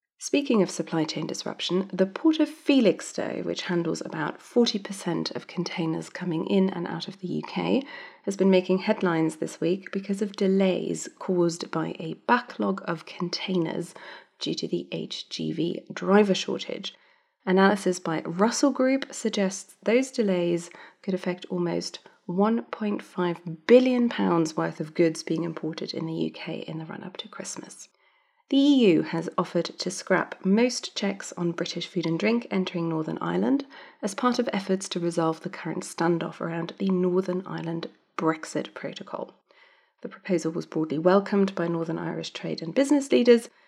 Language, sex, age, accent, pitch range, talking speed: English, female, 30-49, British, 170-235 Hz, 155 wpm